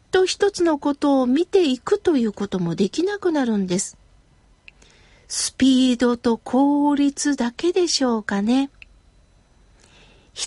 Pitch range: 225-345 Hz